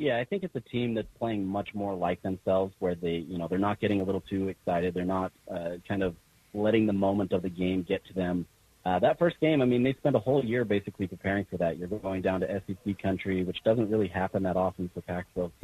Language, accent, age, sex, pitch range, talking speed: English, American, 30-49, male, 95-105 Hz, 255 wpm